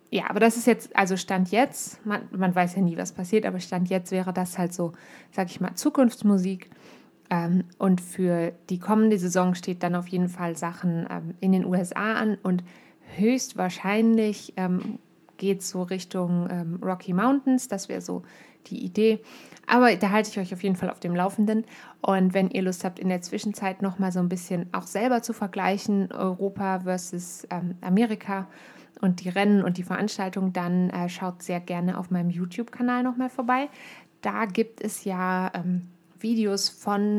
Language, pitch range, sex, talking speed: German, 180-215 Hz, female, 180 wpm